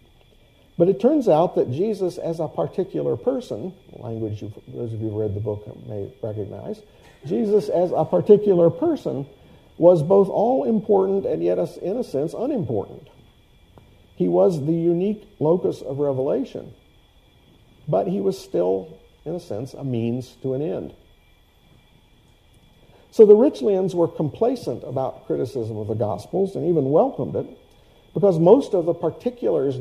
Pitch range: 120-175 Hz